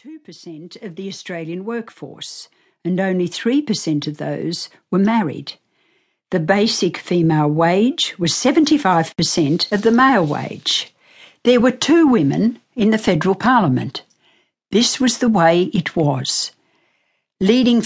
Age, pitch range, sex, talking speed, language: 60-79, 165-235 Hz, female, 125 wpm, English